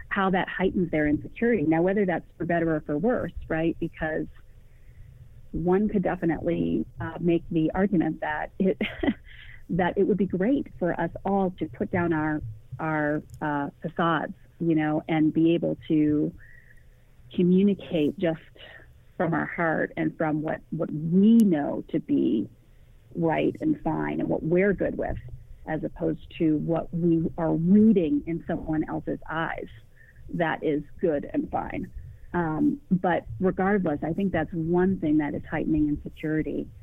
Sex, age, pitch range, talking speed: female, 40-59, 155-190 Hz, 155 wpm